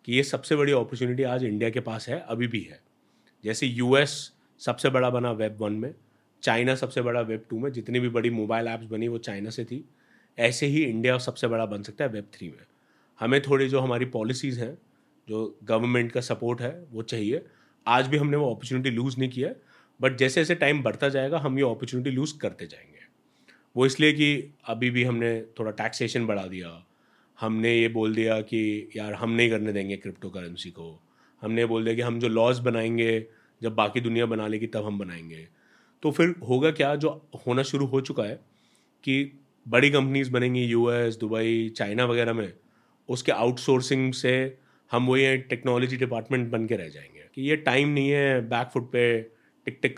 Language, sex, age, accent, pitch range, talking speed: Hindi, male, 30-49, native, 110-135 Hz, 190 wpm